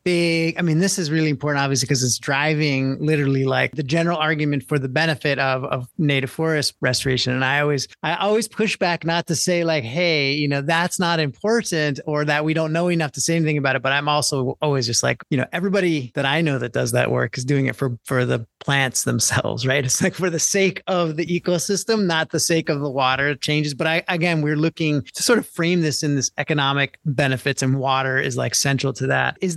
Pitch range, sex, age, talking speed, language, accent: 140-170 Hz, male, 30-49, 235 wpm, English, American